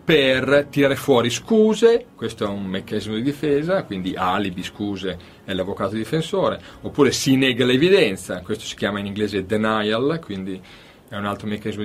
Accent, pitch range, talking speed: native, 110-155 Hz, 155 wpm